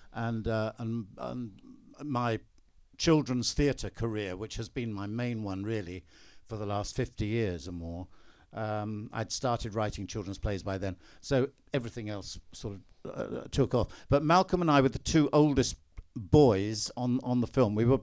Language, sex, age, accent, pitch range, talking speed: English, male, 60-79, British, 100-120 Hz, 175 wpm